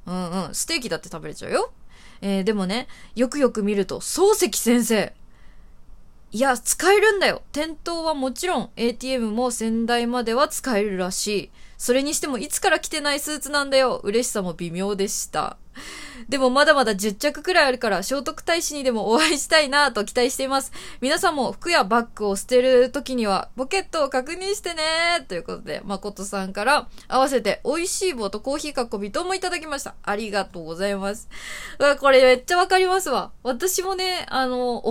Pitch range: 205-300 Hz